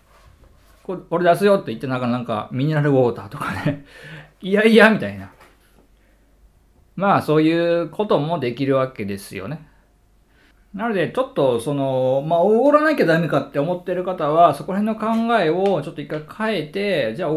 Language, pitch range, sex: Japanese, 135-215 Hz, male